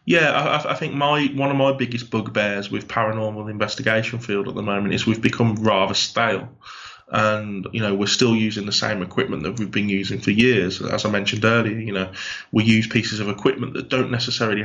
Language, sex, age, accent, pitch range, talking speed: English, male, 20-39, British, 105-125 Hz, 210 wpm